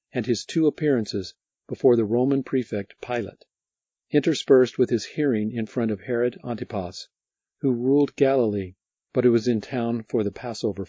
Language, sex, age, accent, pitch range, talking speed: English, male, 50-69, American, 105-135 Hz, 160 wpm